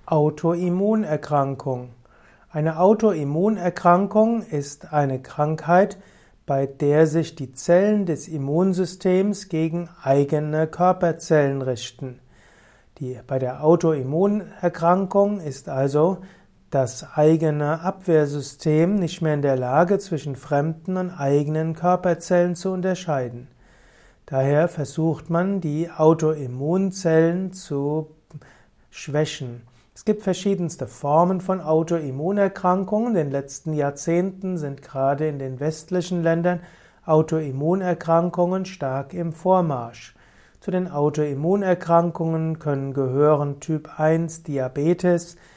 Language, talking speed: German, 90 wpm